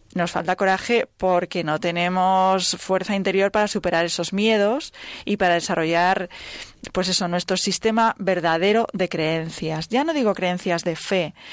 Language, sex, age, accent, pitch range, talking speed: Spanish, female, 20-39, Spanish, 180-225 Hz, 145 wpm